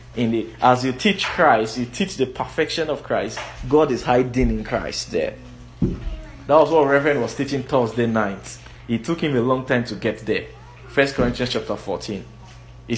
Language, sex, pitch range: English, male, 110-130 Hz